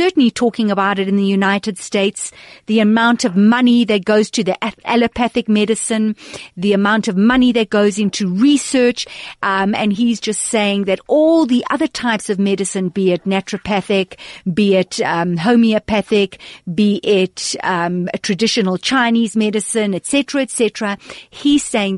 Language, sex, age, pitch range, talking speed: English, female, 50-69, 190-230 Hz, 155 wpm